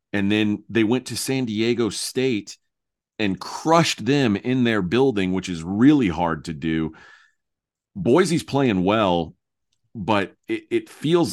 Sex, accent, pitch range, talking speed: male, American, 90-115 Hz, 145 wpm